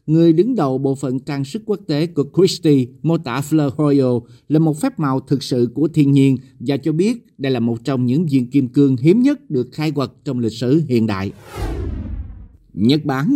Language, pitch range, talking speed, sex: Vietnamese, 135-165 Hz, 210 wpm, male